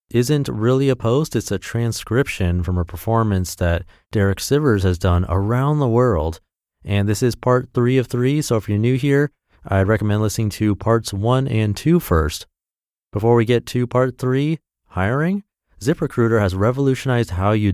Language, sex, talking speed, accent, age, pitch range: English, male, 175 wpm, American, 30-49, 90-125 Hz